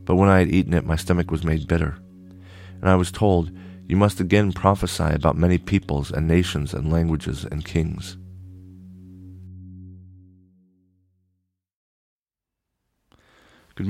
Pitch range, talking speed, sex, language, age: 80-95 Hz, 125 wpm, male, English, 40-59